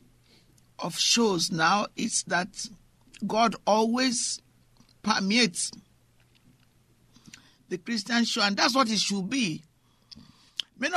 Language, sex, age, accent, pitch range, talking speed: English, male, 60-79, Nigerian, 175-225 Hz, 100 wpm